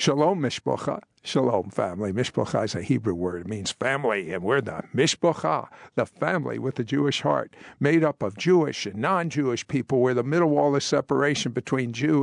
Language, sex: English, male